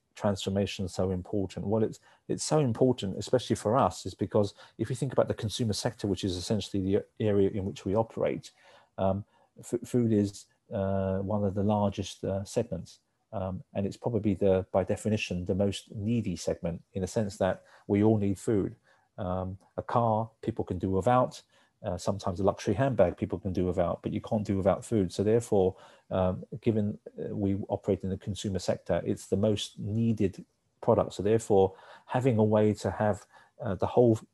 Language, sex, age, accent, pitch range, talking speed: English, male, 40-59, British, 95-110 Hz, 185 wpm